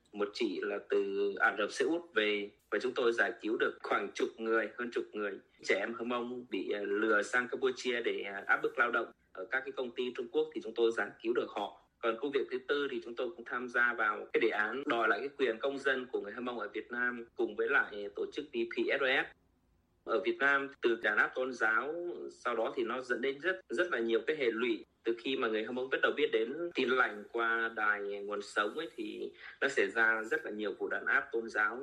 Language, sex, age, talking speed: Vietnamese, male, 20-39, 245 wpm